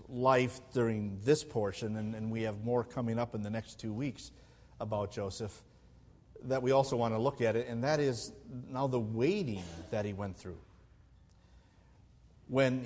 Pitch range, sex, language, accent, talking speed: 110-150 Hz, male, English, American, 175 wpm